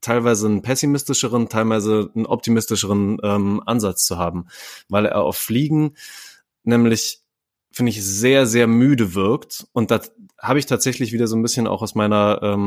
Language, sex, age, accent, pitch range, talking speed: German, male, 20-39, German, 105-125 Hz, 160 wpm